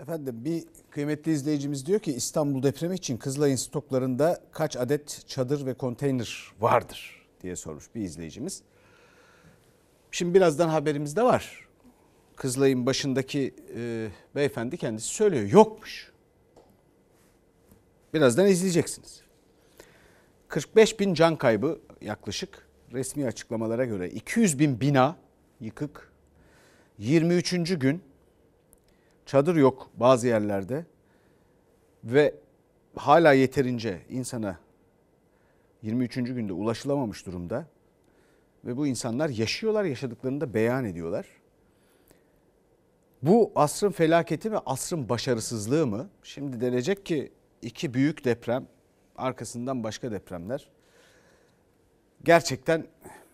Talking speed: 95 wpm